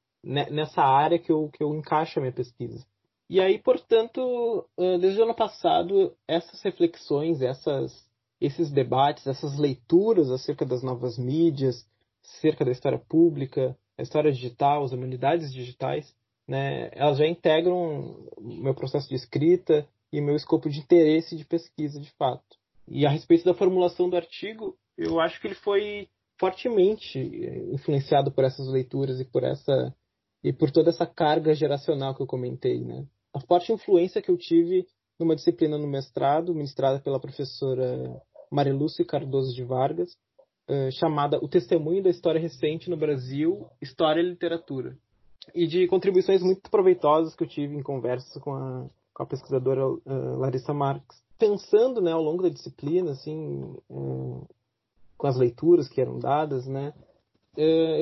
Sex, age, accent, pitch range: male, 20-39, Brazilian, 135-175 Hz